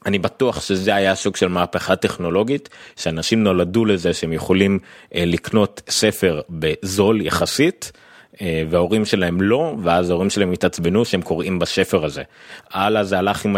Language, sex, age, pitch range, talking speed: Hebrew, male, 30-49, 85-100 Hz, 140 wpm